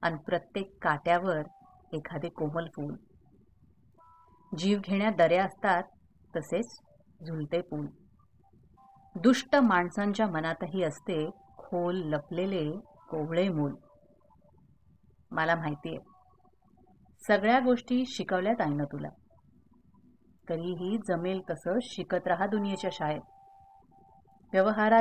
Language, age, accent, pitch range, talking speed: Hindi, 30-49, native, 165-220 Hz, 60 wpm